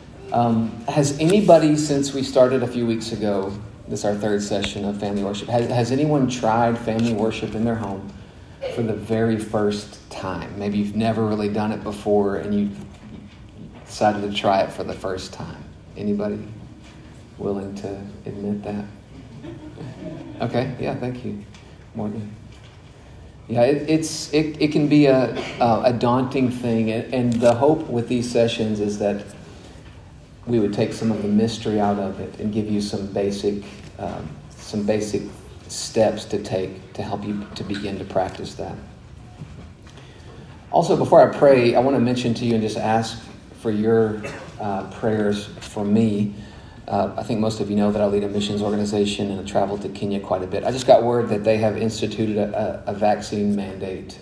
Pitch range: 100-115 Hz